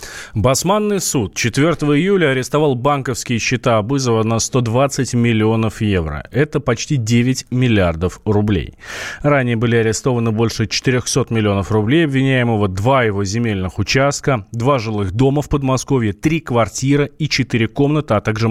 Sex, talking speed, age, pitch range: male, 135 wpm, 30-49, 105-135 Hz